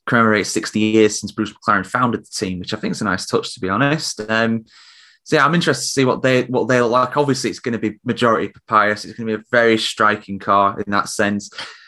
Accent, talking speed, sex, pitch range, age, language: British, 250 wpm, male, 105-130 Hz, 20-39, English